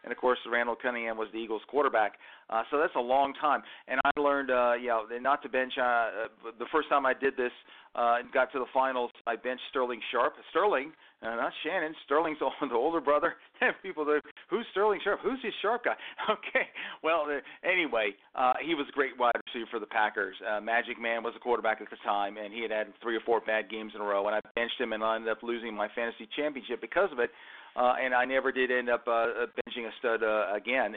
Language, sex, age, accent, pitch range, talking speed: English, male, 40-59, American, 115-130 Hz, 235 wpm